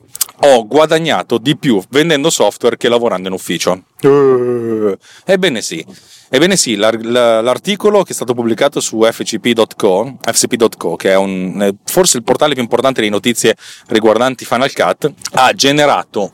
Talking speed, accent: 135 wpm, native